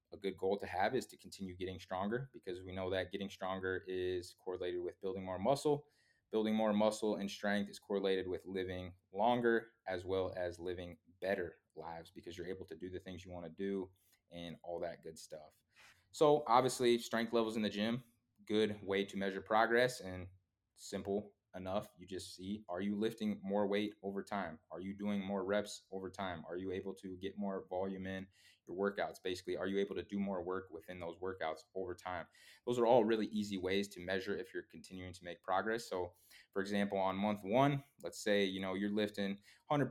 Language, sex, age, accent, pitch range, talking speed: English, male, 20-39, American, 95-110 Hz, 205 wpm